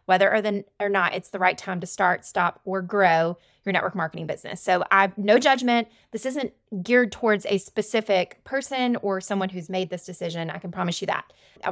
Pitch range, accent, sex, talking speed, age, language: 180-225 Hz, American, female, 215 wpm, 20-39, English